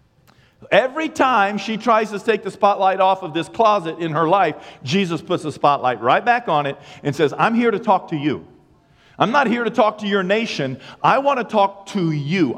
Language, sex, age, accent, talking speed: English, male, 50-69, American, 215 wpm